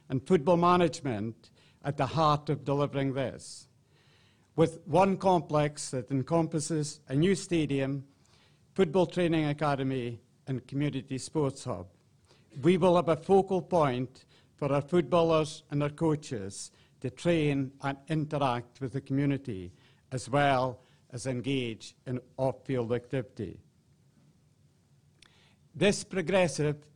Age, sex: 60-79, male